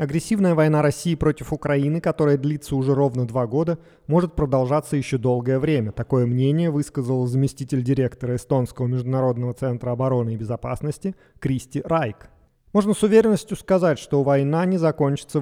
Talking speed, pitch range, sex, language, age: 145 wpm, 125-150 Hz, male, Russian, 30-49